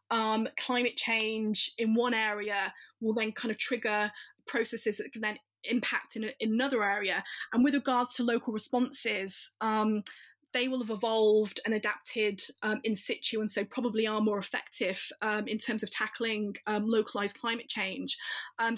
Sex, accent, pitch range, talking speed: female, British, 210-240 Hz, 165 wpm